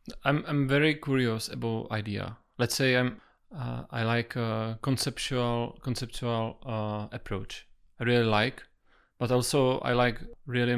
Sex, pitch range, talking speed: male, 115-135 Hz, 140 wpm